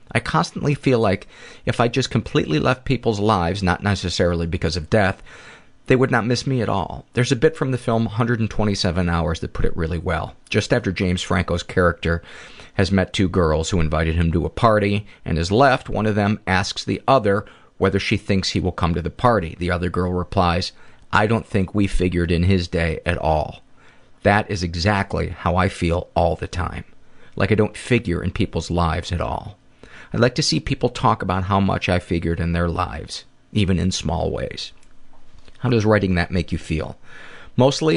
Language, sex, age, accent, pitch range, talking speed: English, male, 40-59, American, 85-110 Hz, 200 wpm